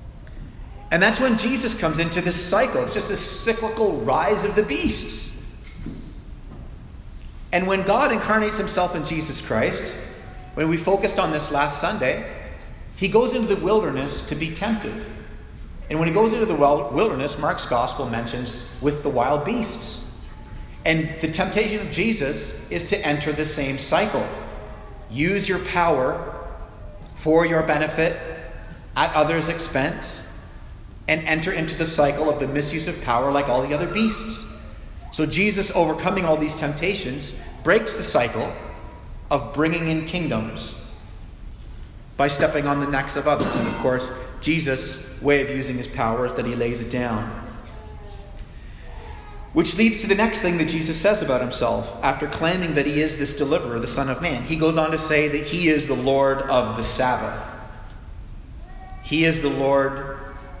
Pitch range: 125-170 Hz